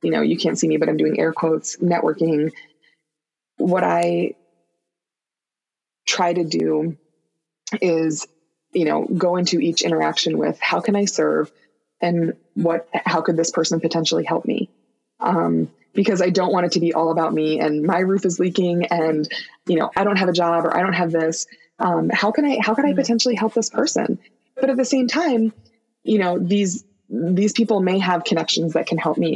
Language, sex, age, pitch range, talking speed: English, female, 20-39, 165-200 Hz, 195 wpm